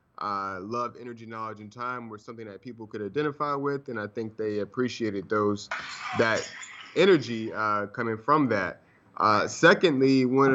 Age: 30-49